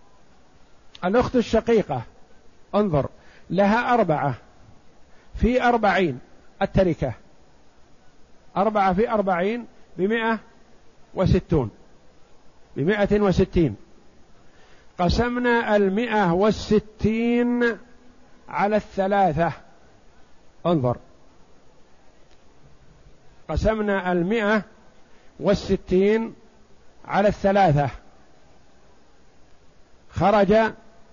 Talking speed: 50 wpm